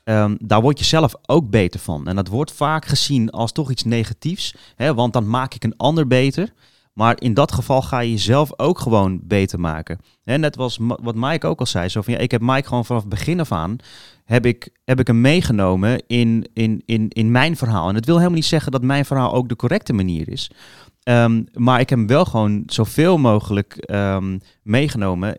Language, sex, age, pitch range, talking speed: Dutch, male, 30-49, 105-135 Hz, 220 wpm